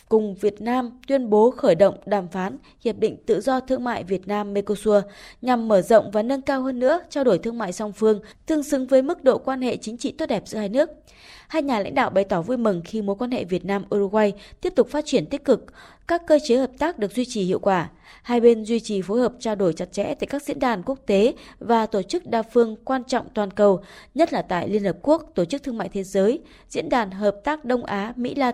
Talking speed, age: 250 wpm, 20-39